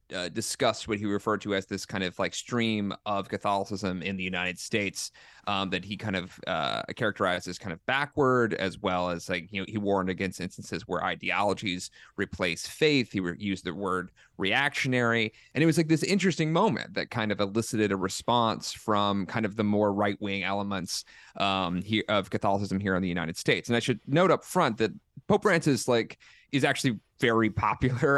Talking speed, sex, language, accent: 195 wpm, male, English, American